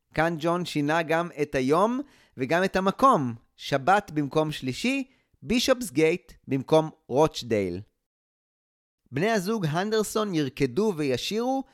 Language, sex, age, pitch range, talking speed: Hebrew, male, 30-49, 135-205 Hz, 100 wpm